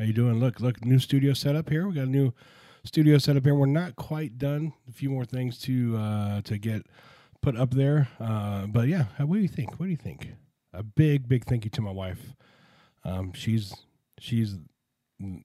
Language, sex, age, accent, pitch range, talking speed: English, male, 40-59, American, 115-140 Hz, 215 wpm